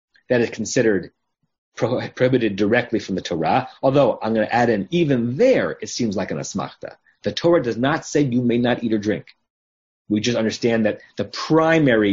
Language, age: English, 30-49